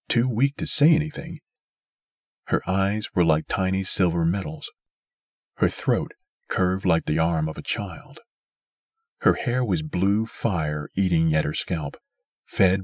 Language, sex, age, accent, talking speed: English, male, 40-59, American, 145 wpm